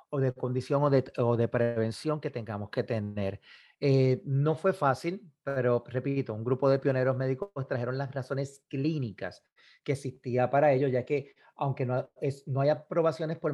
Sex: male